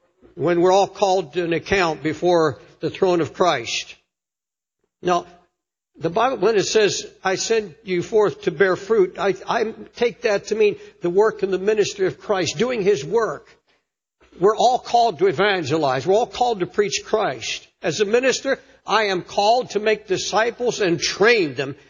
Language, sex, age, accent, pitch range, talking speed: English, male, 60-79, American, 185-250 Hz, 175 wpm